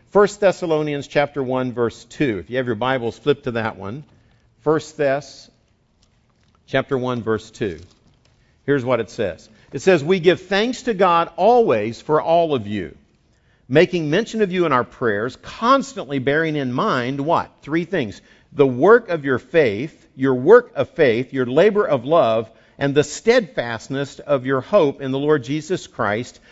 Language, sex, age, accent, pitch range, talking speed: English, male, 50-69, American, 125-170 Hz, 170 wpm